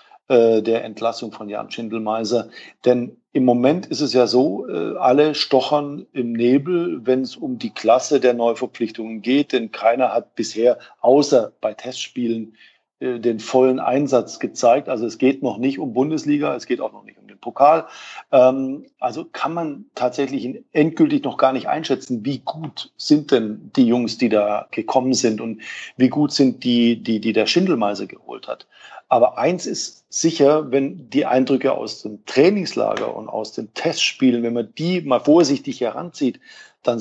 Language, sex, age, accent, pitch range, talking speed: German, male, 40-59, German, 120-145 Hz, 165 wpm